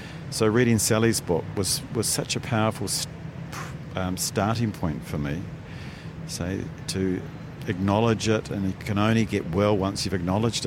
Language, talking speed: English, 150 wpm